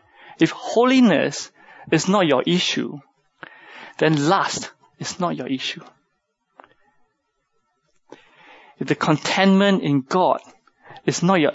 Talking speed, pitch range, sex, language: 105 wpm, 140-175 Hz, male, English